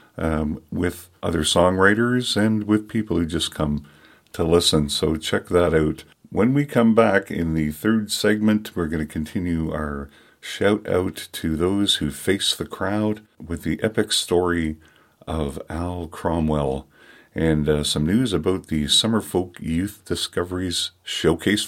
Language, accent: English, American